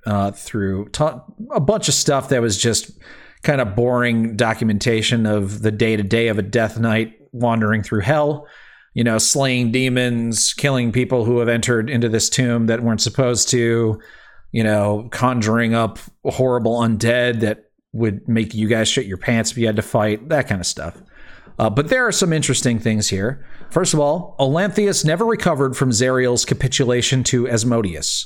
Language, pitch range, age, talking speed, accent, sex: English, 110-135 Hz, 40-59, 175 wpm, American, male